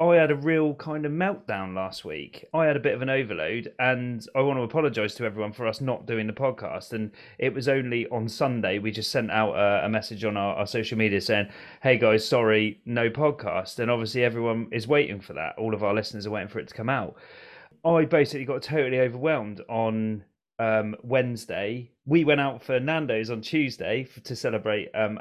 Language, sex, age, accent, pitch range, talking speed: English, male, 30-49, British, 110-140 Hz, 210 wpm